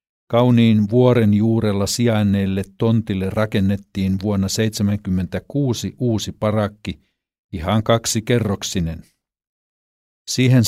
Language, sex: Finnish, male